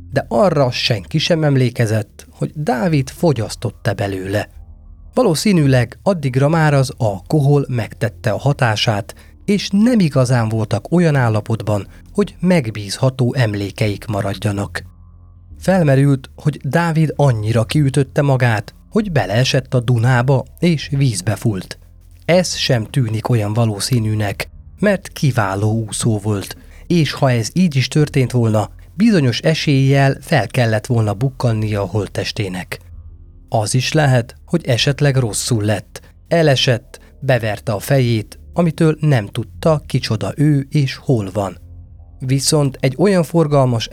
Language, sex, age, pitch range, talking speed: Hungarian, male, 30-49, 105-145 Hz, 120 wpm